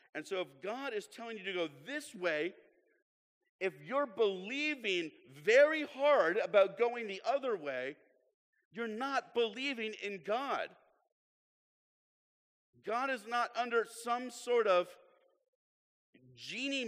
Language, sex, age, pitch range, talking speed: English, male, 50-69, 185-275 Hz, 120 wpm